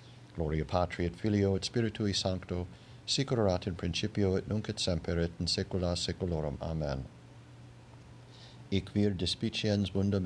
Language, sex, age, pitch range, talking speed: English, male, 60-79, 95-120 Hz, 125 wpm